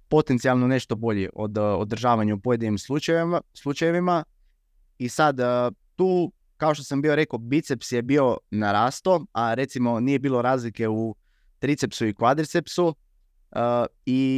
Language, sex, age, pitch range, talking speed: Croatian, male, 20-39, 115-140 Hz, 130 wpm